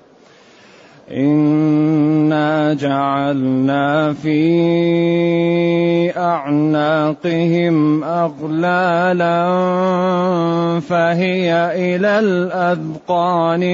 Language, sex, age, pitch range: Arabic, male, 30-49, 160-180 Hz